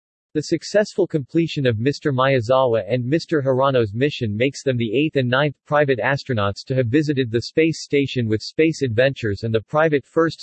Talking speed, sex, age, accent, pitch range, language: 180 wpm, male, 40-59, American, 115-150 Hz, English